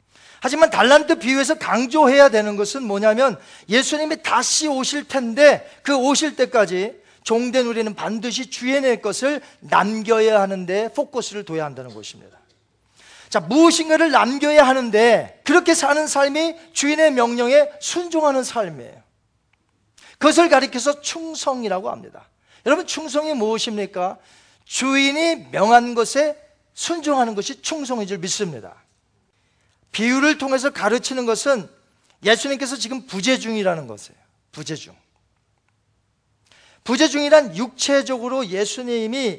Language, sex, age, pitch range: Korean, male, 40-59, 205-285 Hz